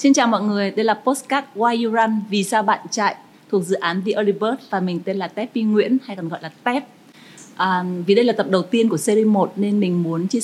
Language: Vietnamese